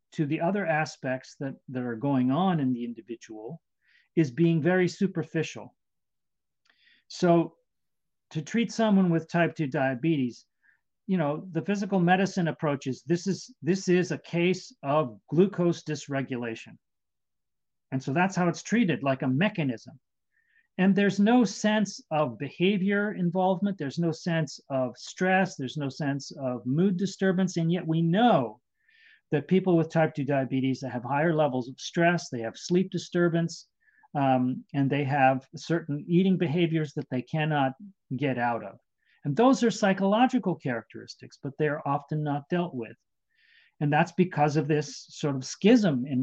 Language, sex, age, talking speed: English, male, 40-59, 155 wpm